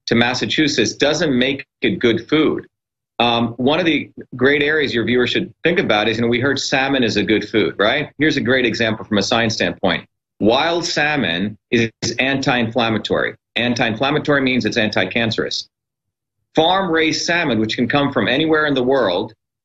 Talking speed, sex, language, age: 165 wpm, male, English, 40-59